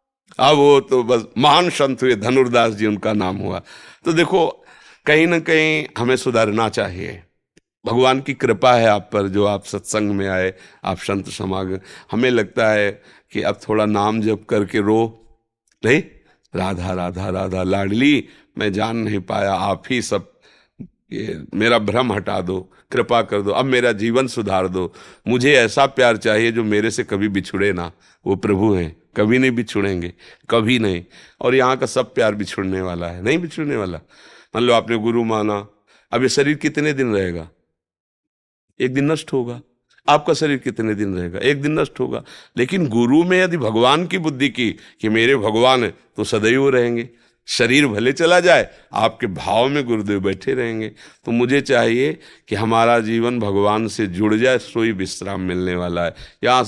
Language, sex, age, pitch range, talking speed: Hindi, male, 50-69, 100-130 Hz, 175 wpm